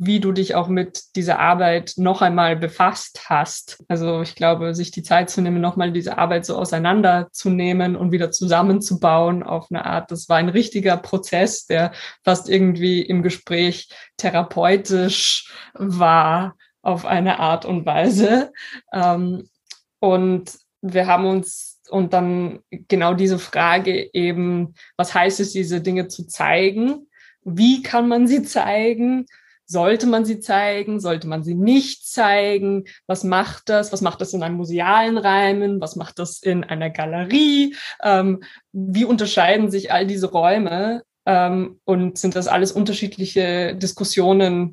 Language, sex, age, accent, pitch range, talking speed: German, female, 20-39, German, 175-195 Hz, 145 wpm